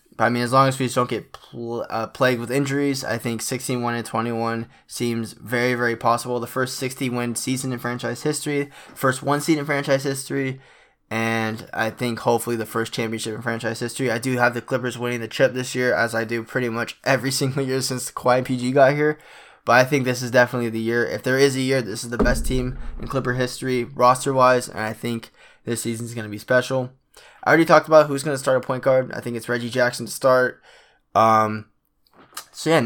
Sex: male